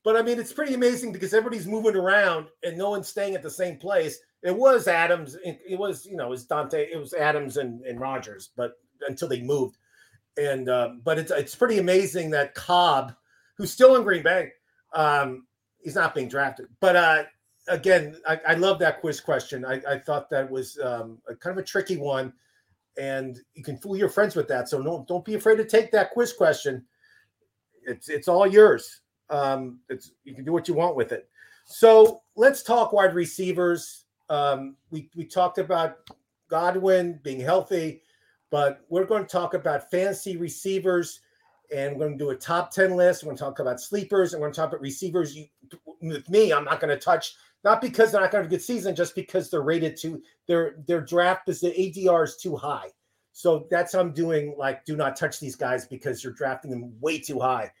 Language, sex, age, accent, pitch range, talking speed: English, male, 40-59, American, 140-195 Hz, 210 wpm